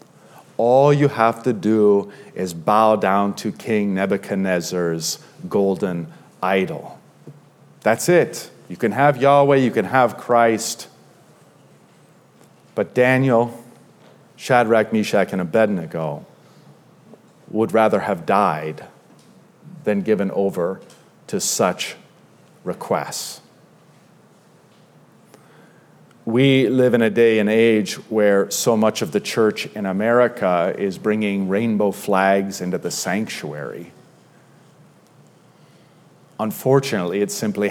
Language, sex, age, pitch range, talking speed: English, male, 40-59, 100-120 Hz, 100 wpm